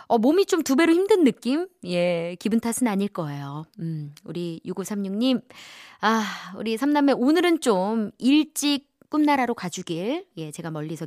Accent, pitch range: native, 220-315 Hz